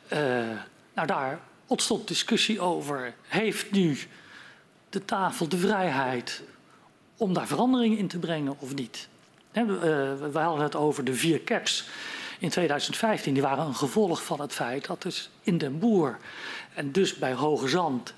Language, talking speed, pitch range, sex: Dutch, 150 wpm, 135-190 Hz, male